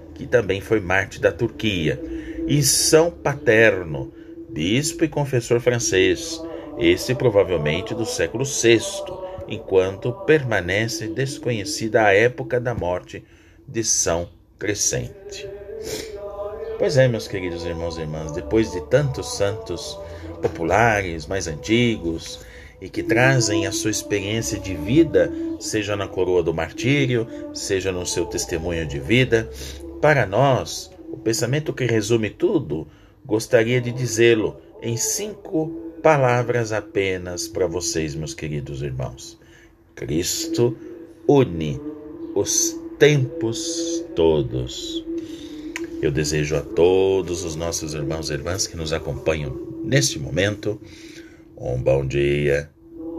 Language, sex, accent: Portuguese, male, Brazilian